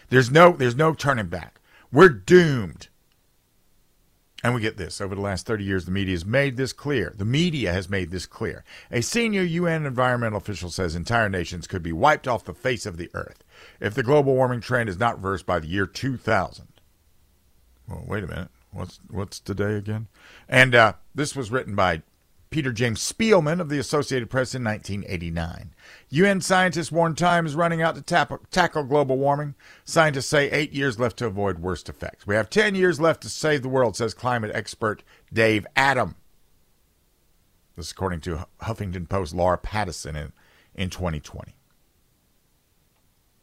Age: 50-69